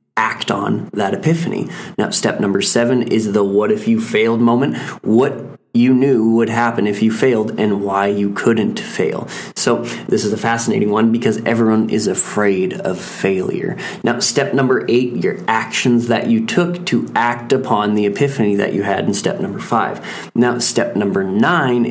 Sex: male